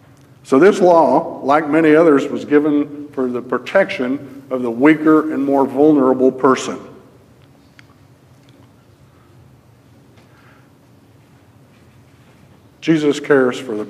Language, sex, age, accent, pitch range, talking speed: English, male, 60-79, American, 125-145 Hz, 95 wpm